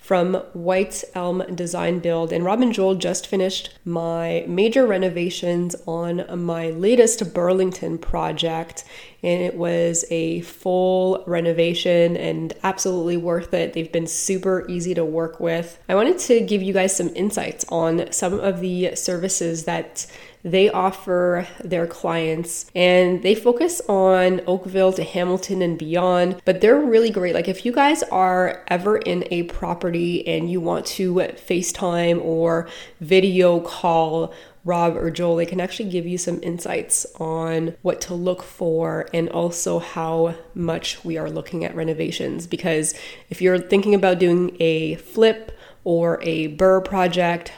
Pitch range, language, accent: 165-190 Hz, English, American